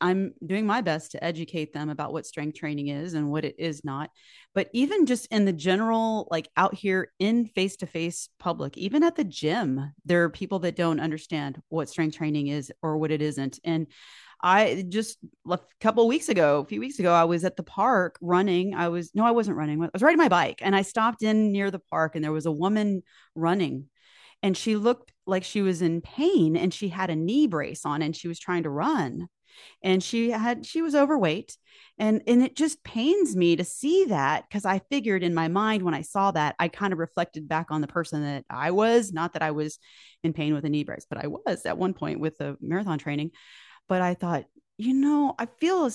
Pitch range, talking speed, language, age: 160-235 Hz, 225 wpm, English, 30-49